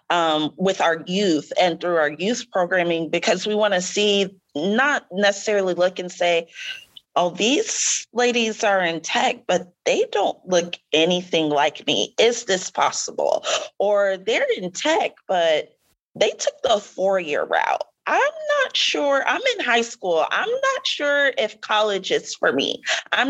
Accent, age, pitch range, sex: American, 30-49, 170-240 Hz, female